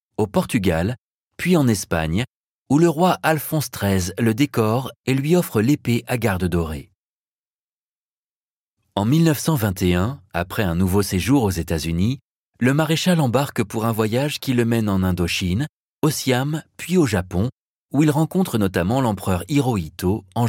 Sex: male